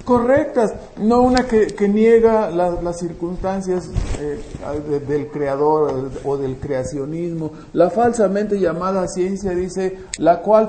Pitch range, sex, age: 175-230 Hz, male, 50-69